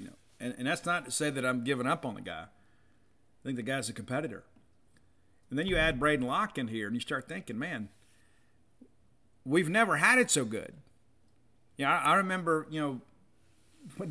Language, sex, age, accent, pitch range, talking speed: English, male, 50-69, American, 115-140 Hz, 185 wpm